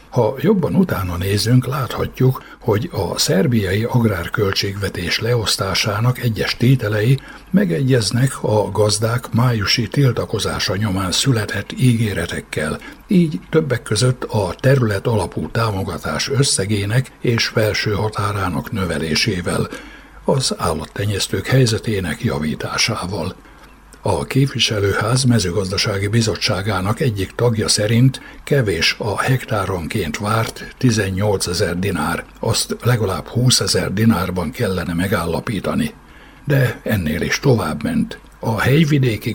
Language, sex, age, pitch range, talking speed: Hungarian, male, 60-79, 100-125 Hz, 95 wpm